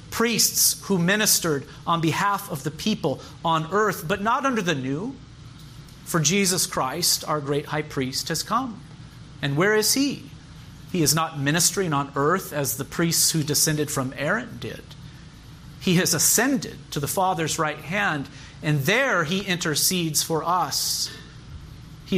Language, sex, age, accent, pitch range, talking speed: English, male, 40-59, American, 145-185 Hz, 155 wpm